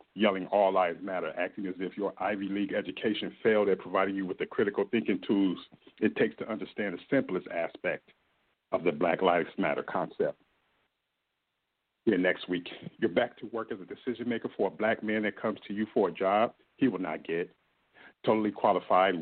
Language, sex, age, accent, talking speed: English, male, 50-69, American, 190 wpm